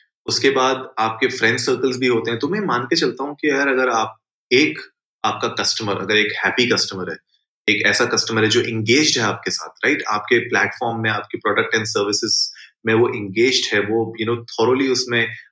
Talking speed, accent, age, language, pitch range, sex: 200 wpm, native, 30-49, Hindi, 115-160 Hz, male